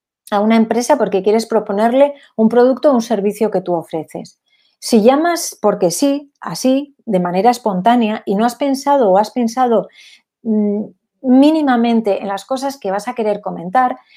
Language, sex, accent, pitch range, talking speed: Spanish, female, Spanish, 195-250 Hz, 165 wpm